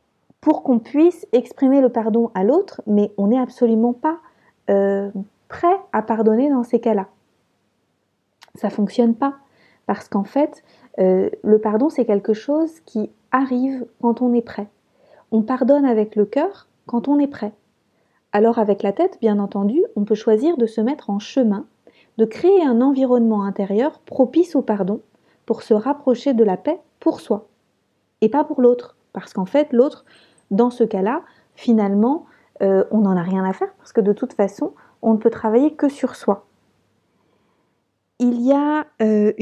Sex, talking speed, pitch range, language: female, 170 wpm, 205-265 Hz, French